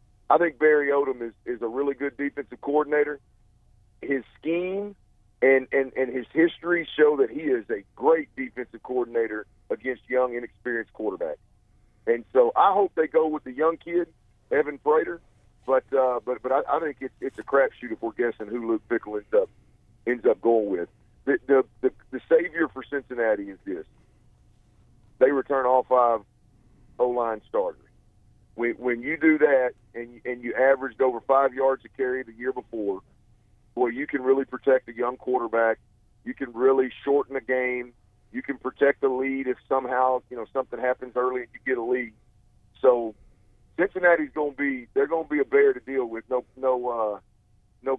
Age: 50-69